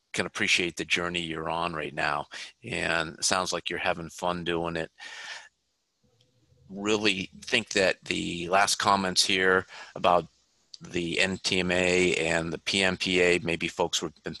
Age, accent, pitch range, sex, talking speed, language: 40-59, American, 85-95 Hz, male, 140 wpm, English